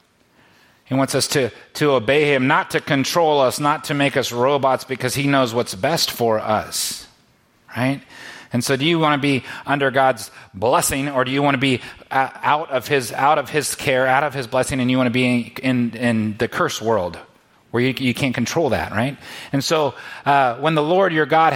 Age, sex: 30-49, male